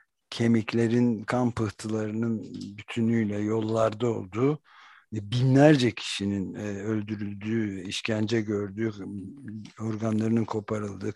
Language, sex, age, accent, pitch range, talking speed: Turkish, male, 60-79, native, 105-125 Hz, 70 wpm